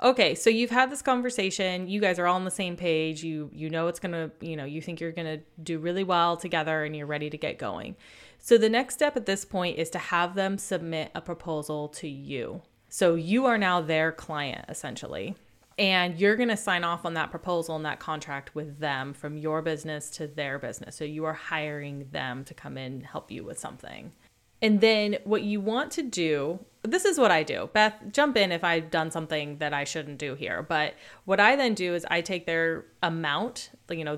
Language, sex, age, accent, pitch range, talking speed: English, female, 20-39, American, 150-180 Hz, 225 wpm